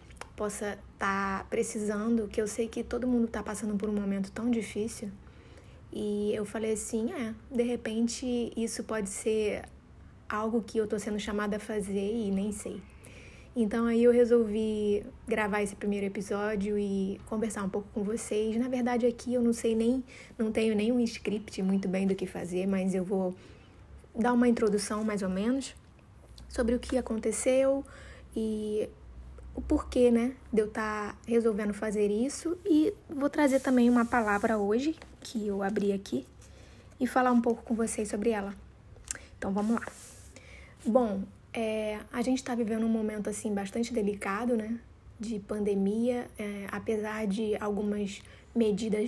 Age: 20-39